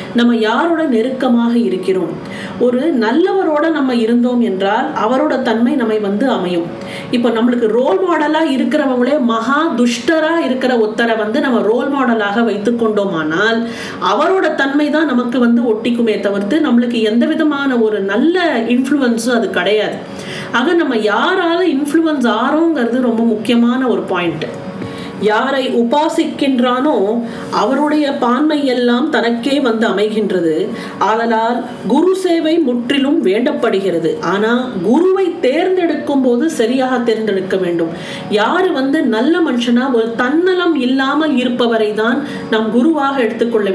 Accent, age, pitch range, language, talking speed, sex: native, 40-59, 225-295 Hz, Tamil, 105 wpm, female